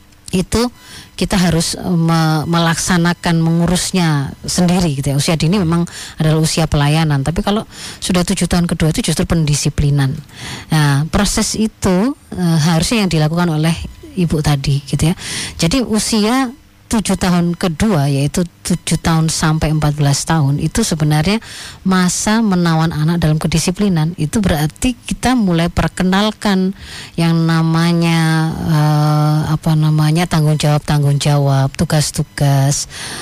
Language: Indonesian